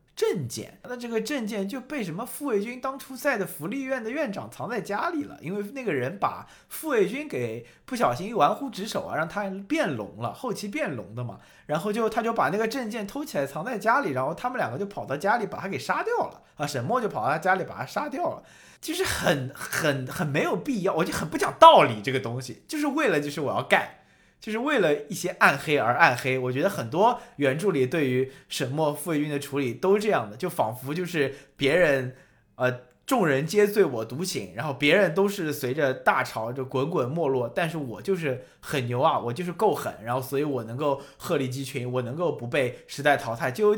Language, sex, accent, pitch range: Chinese, male, native, 130-210 Hz